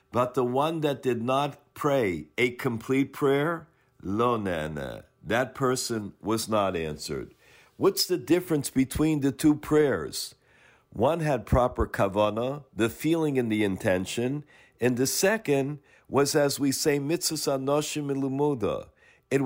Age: 50-69